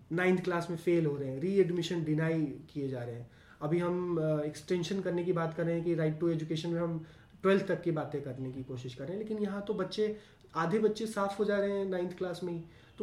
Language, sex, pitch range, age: Hindi, male, 155-200 Hz, 20-39